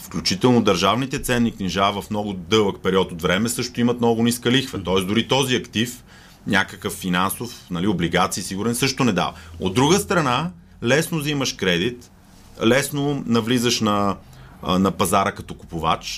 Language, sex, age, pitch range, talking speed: Bulgarian, male, 30-49, 105-135 Hz, 150 wpm